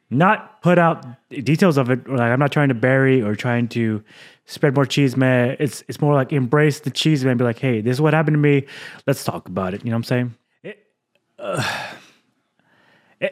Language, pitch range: English, 115-145 Hz